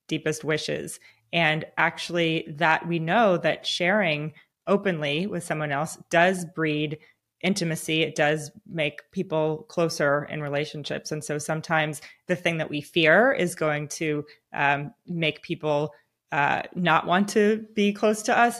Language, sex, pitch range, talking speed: English, female, 150-180 Hz, 145 wpm